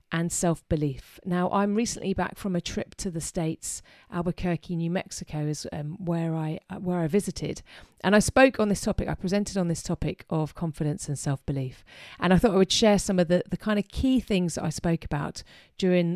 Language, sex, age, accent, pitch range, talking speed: English, female, 40-59, British, 160-200 Hz, 210 wpm